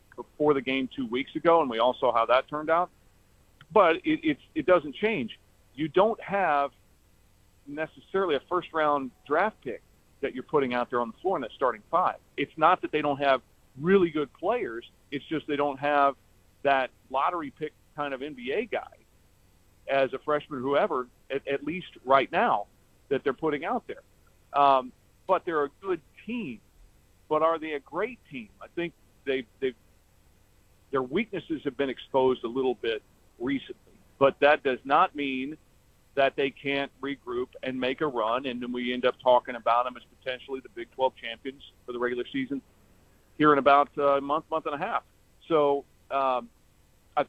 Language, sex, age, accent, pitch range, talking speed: English, male, 40-59, American, 120-150 Hz, 185 wpm